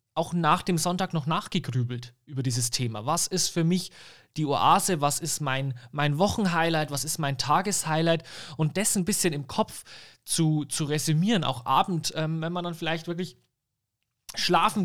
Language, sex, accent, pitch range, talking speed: English, male, German, 135-175 Hz, 170 wpm